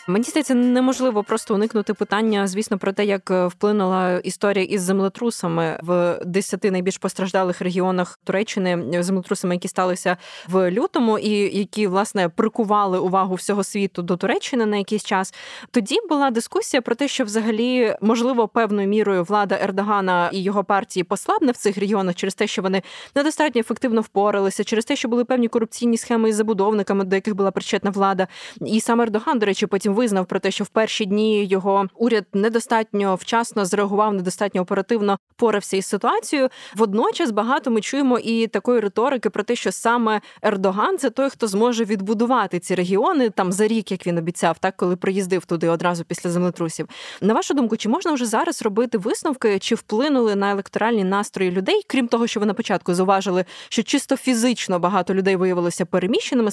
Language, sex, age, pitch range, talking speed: Ukrainian, female, 20-39, 190-230 Hz, 170 wpm